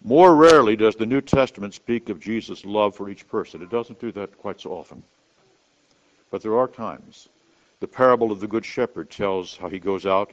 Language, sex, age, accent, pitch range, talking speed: English, male, 60-79, American, 95-115 Hz, 205 wpm